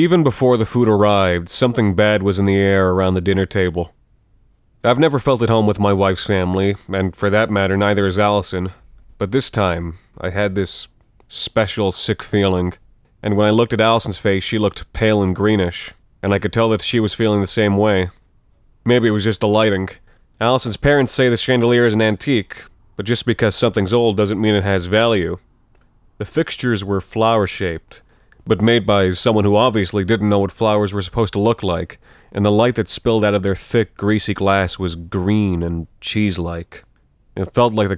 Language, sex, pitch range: English, male, 95-115 Hz